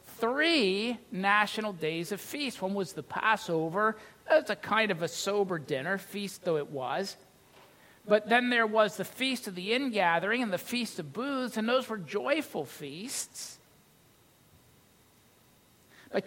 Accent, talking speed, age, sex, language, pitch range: American, 150 wpm, 50-69, male, English, 170-220 Hz